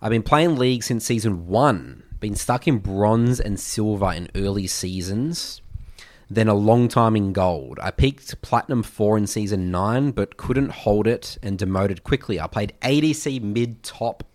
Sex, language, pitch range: male, English, 95-115 Hz